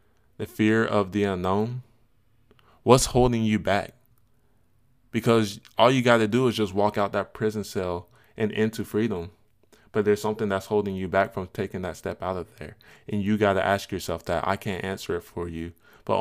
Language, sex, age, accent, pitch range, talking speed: English, male, 20-39, American, 95-105 Hz, 195 wpm